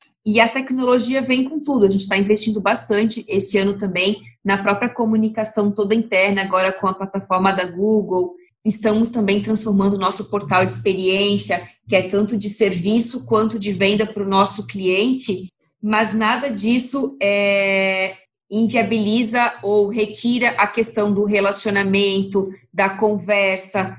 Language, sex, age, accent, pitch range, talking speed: Portuguese, female, 20-39, Brazilian, 200-230 Hz, 145 wpm